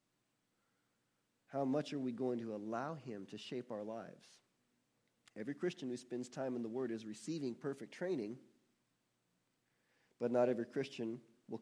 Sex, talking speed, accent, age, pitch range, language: male, 150 wpm, American, 40-59, 110-140 Hz, English